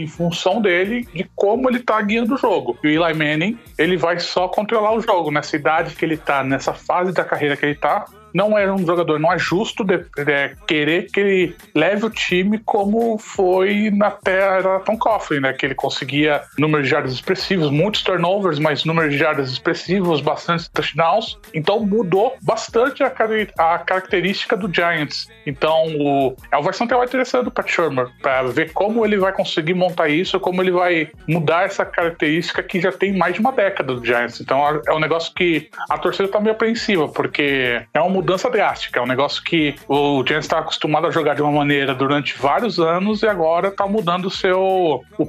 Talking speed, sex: 195 wpm, male